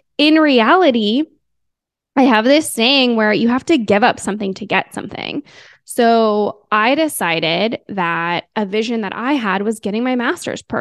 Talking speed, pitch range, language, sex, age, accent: 160 wpm, 195-240 Hz, English, female, 20-39, American